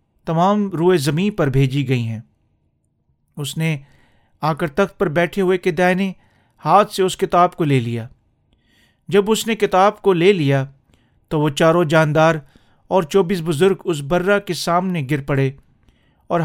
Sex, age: male, 40-59